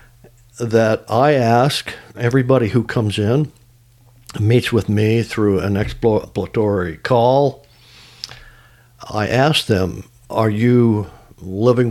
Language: English